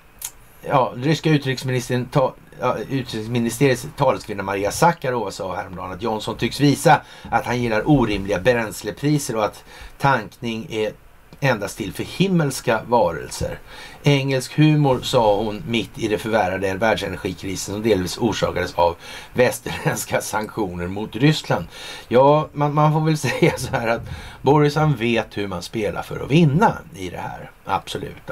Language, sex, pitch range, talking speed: Swedish, male, 110-150 Hz, 140 wpm